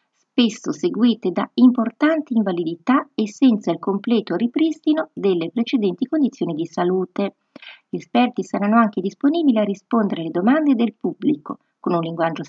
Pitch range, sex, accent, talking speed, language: 175-255 Hz, female, native, 140 wpm, Italian